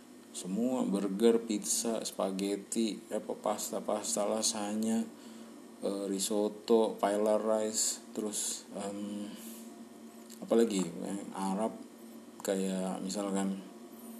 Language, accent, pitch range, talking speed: Indonesian, native, 95-115 Hz, 70 wpm